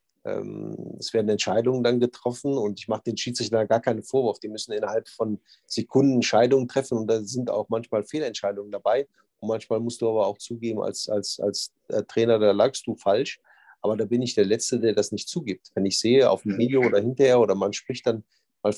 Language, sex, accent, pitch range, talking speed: German, male, German, 110-125 Hz, 205 wpm